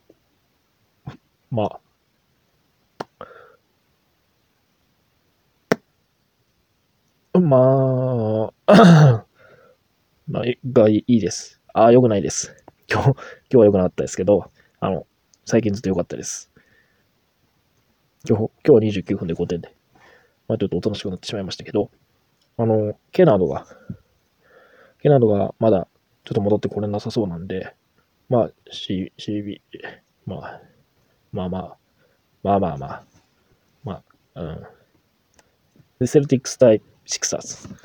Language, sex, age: Japanese, male, 20-39